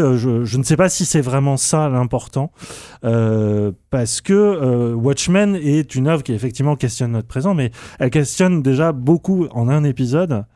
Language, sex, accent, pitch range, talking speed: French, male, French, 110-140 Hz, 175 wpm